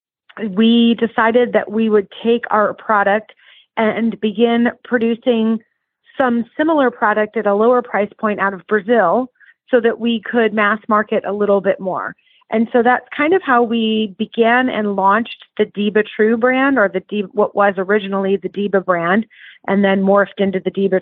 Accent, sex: American, female